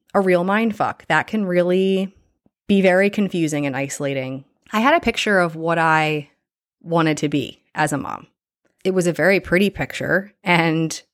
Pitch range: 160-215 Hz